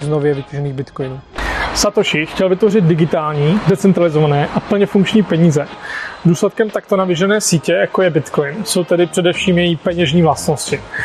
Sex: male